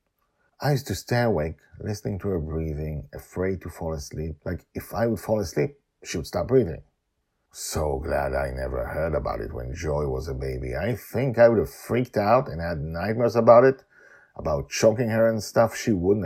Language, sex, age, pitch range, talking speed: English, male, 50-69, 80-120 Hz, 200 wpm